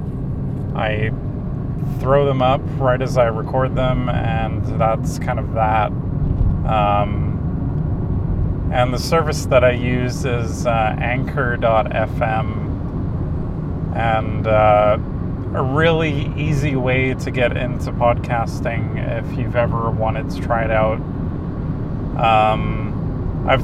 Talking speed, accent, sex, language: 110 wpm, American, male, English